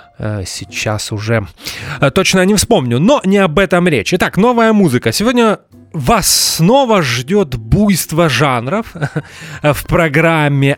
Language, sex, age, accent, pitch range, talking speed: Russian, male, 20-39, native, 130-185 Hz, 115 wpm